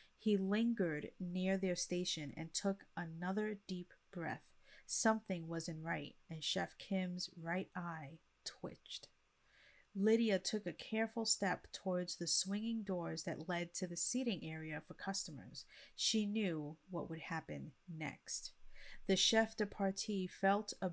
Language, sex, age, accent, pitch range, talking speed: English, female, 30-49, American, 165-200 Hz, 140 wpm